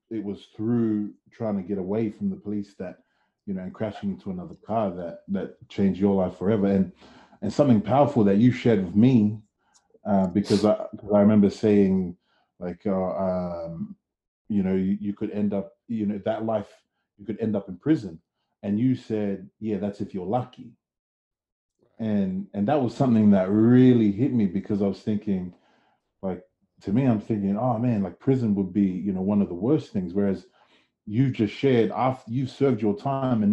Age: 30-49